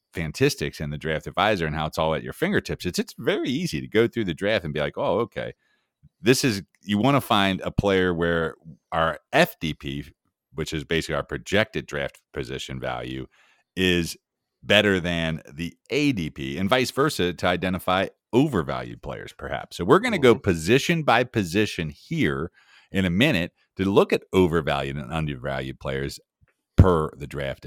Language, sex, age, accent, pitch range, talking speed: English, male, 40-59, American, 80-110 Hz, 175 wpm